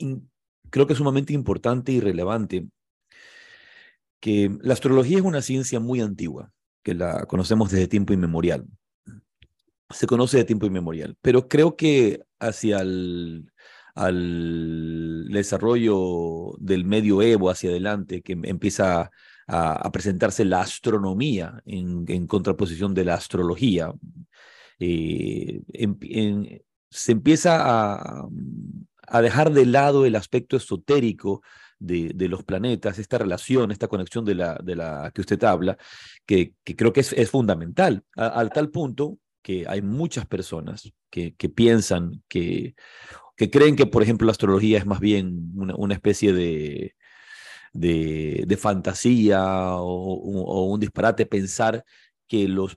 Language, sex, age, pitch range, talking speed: Spanish, male, 40-59, 95-125 Hz, 140 wpm